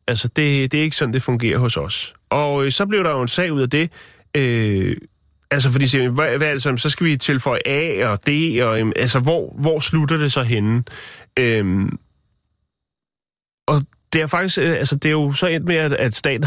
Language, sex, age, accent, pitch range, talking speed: Danish, male, 30-49, native, 115-150 Hz, 210 wpm